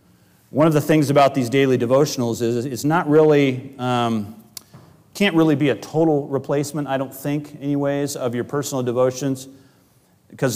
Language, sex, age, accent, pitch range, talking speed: English, male, 40-59, American, 110-135 Hz, 160 wpm